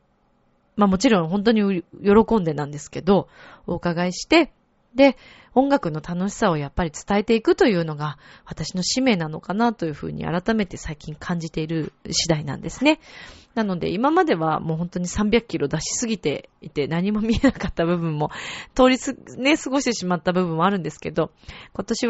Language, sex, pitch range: Japanese, female, 165-240 Hz